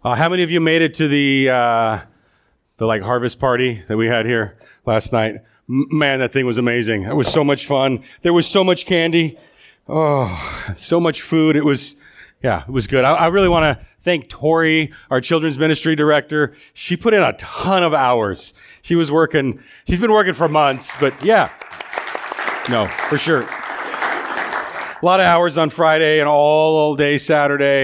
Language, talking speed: English, 185 wpm